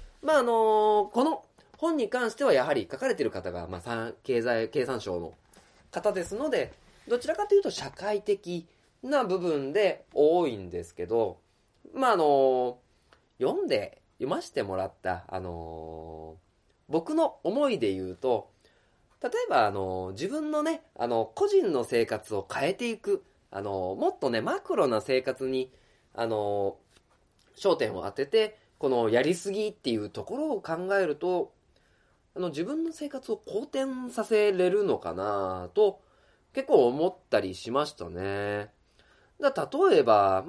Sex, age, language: male, 20-39, Japanese